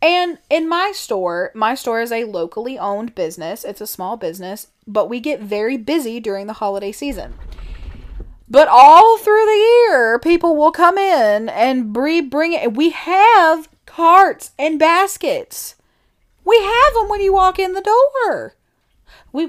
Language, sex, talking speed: English, female, 155 wpm